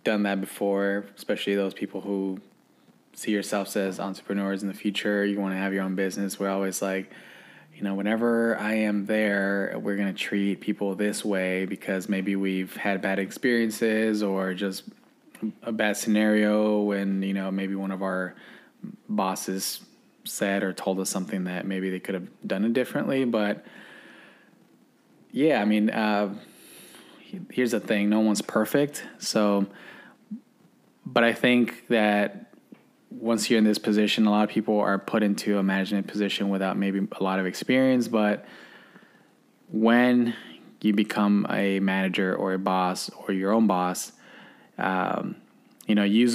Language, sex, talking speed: English, male, 160 wpm